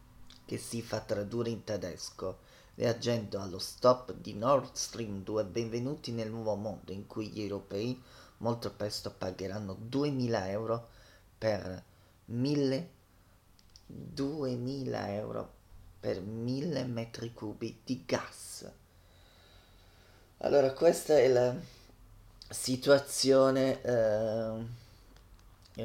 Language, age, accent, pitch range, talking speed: Italian, 30-49, native, 100-125 Hz, 95 wpm